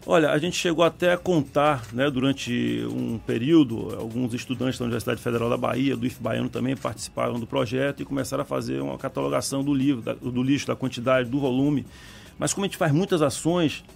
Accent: Brazilian